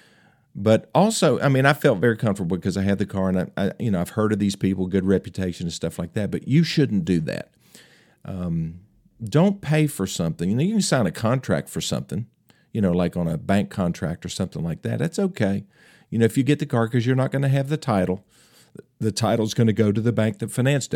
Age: 50-69